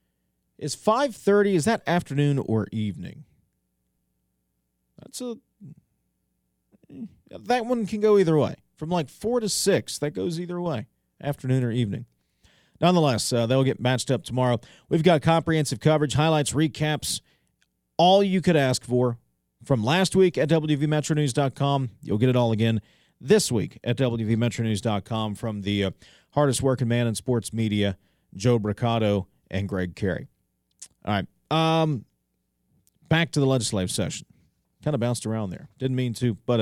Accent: American